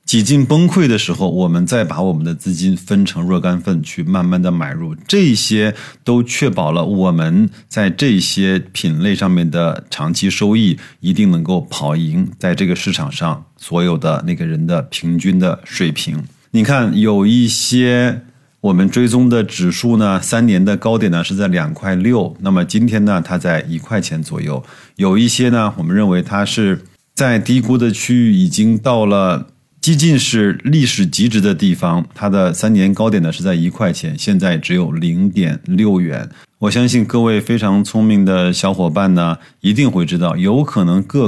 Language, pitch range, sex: Chinese, 95-165 Hz, male